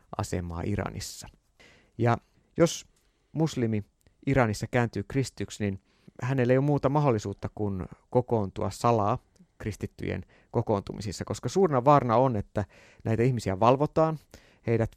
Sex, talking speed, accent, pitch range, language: male, 110 wpm, native, 105-130 Hz, Finnish